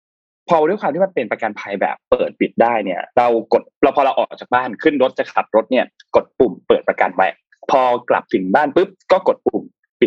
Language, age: Thai, 20-39